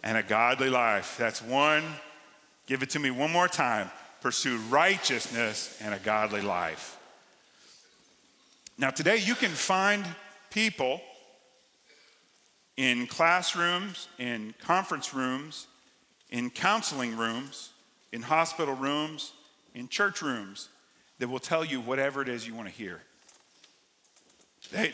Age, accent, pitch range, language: 50-69, American, 135-180 Hz, English